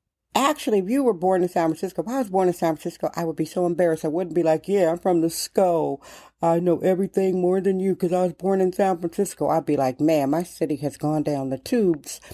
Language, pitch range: English, 160-210 Hz